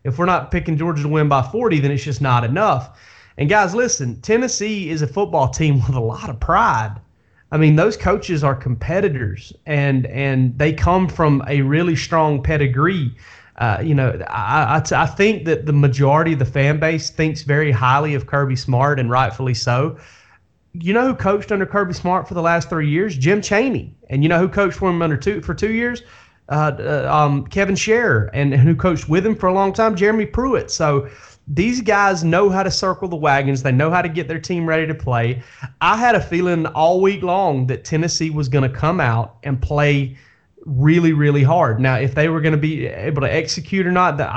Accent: American